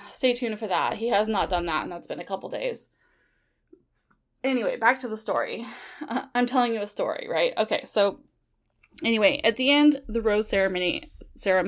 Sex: female